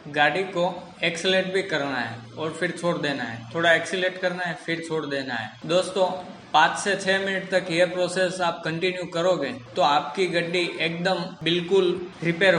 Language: Hindi